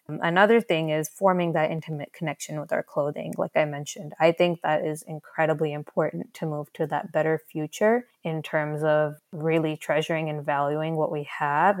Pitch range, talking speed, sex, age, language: 155-175 Hz, 180 wpm, female, 20-39, English